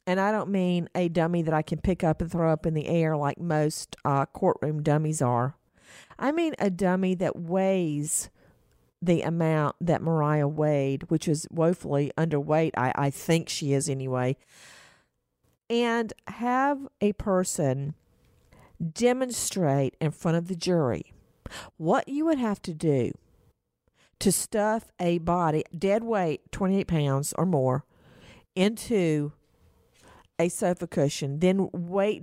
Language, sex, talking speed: English, female, 140 wpm